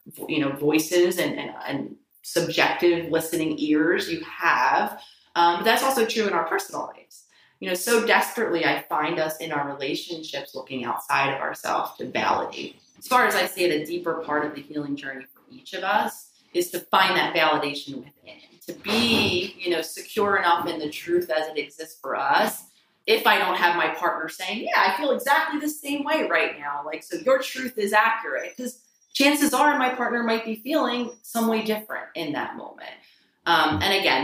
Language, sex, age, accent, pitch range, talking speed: English, female, 30-49, American, 150-215 Hz, 195 wpm